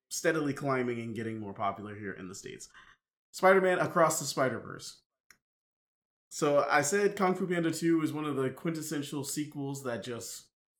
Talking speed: 170 wpm